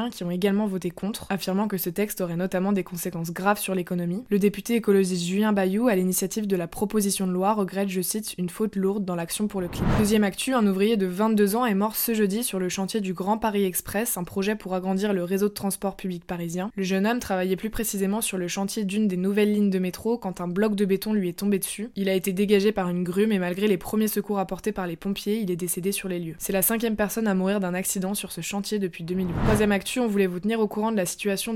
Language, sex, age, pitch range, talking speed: French, female, 20-39, 185-210 Hz, 255 wpm